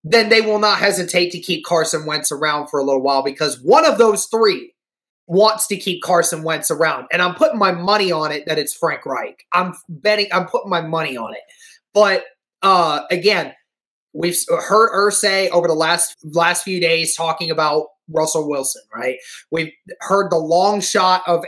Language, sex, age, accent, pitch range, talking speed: English, male, 20-39, American, 170-215 Hz, 190 wpm